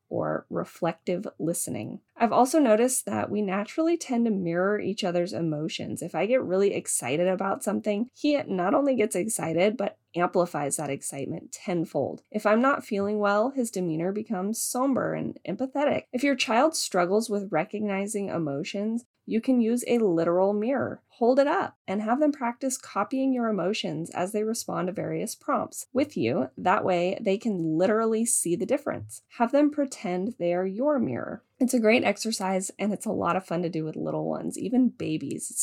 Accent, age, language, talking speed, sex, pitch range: American, 20-39, English, 180 wpm, female, 175-235 Hz